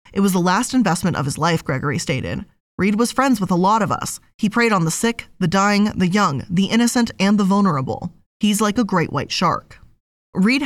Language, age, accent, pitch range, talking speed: English, 20-39, American, 170-235 Hz, 220 wpm